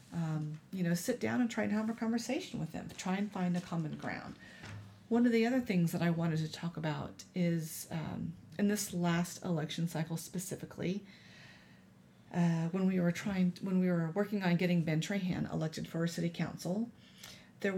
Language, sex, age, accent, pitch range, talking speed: English, female, 40-59, American, 165-200 Hz, 195 wpm